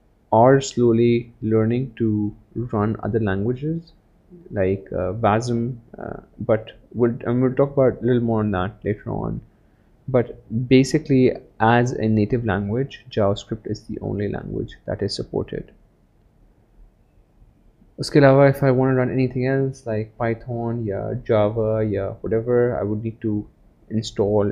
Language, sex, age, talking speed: Urdu, male, 30-49, 145 wpm